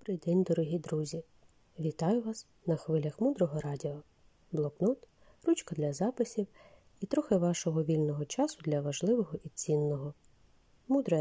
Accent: native